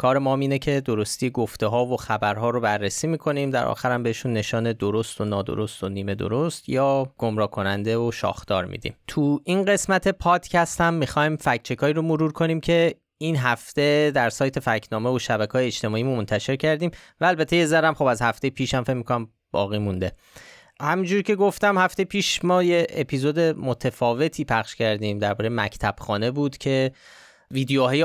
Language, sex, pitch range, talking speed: Persian, male, 115-155 Hz, 165 wpm